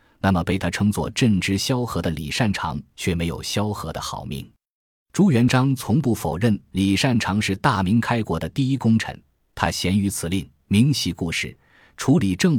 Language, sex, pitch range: Chinese, male, 85-115 Hz